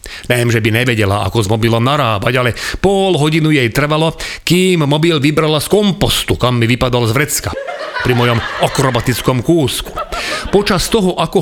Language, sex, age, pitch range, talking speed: Slovak, male, 40-59, 120-165 Hz, 160 wpm